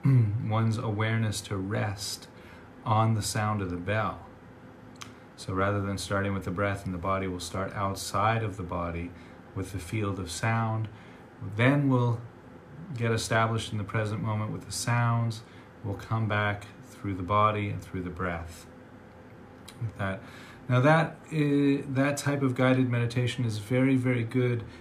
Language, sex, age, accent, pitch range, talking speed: English, male, 30-49, American, 95-115 Hz, 155 wpm